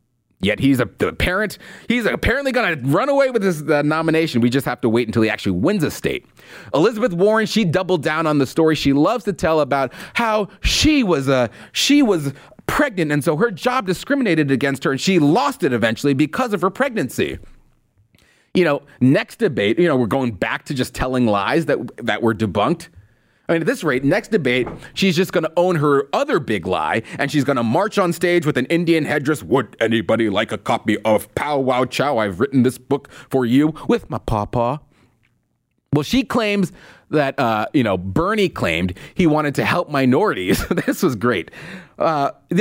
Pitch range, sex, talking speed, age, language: 125-190 Hz, male, 200 wpm, 30-49, English